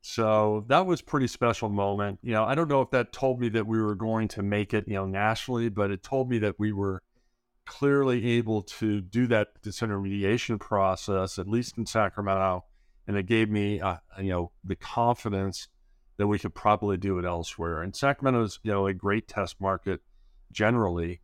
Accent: American